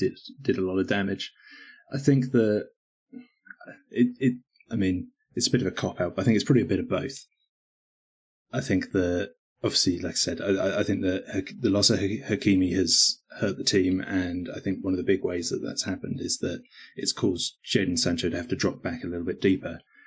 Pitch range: 90-115 Hz